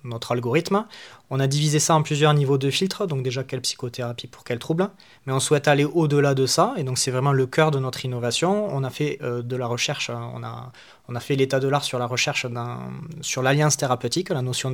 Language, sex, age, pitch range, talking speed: French, male, 20-39, 125-150 Hz, 235 wpm